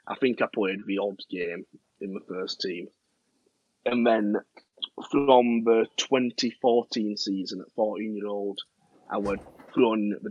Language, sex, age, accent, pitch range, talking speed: English, male, 30-49, British, 100-130 Hz, 140 wpm